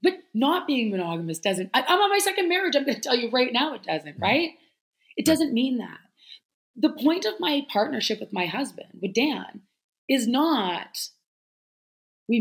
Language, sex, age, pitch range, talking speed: English, female, 20-39, 215-290 Hz, 180 wpm